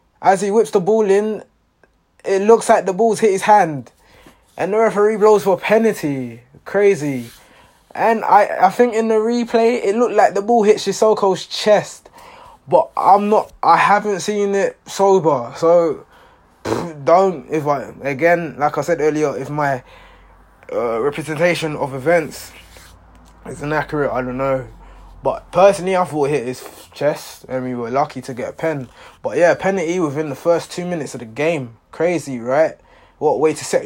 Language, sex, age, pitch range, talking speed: English, male, 20-39, 140-205 Hz, 175 wpm